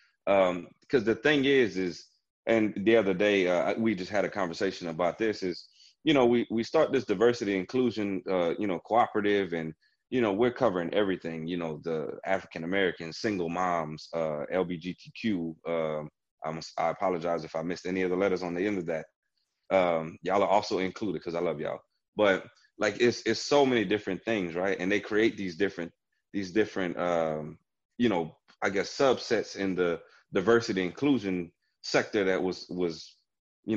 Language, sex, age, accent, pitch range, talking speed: English, male, 30-49, American, 85-115 Hz, 180 wpm